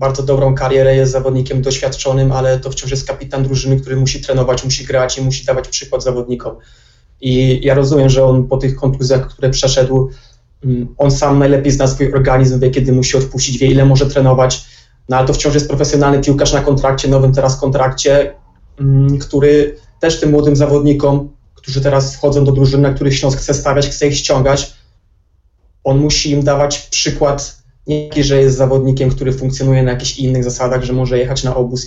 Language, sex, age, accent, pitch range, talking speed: Polish, male, 20-39, native, 130-140 Hz, 180 wpm